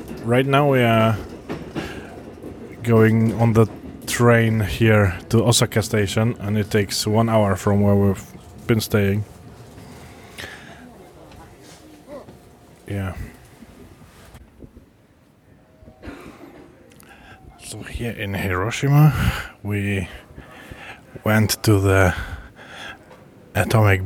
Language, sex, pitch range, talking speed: English, male, 95-110 Hz, 80 wpm